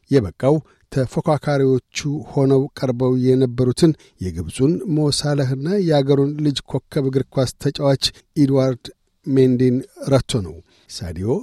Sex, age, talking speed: male, 60-79, 85 wpm